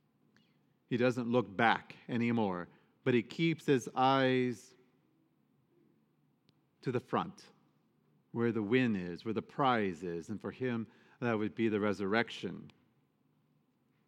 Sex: male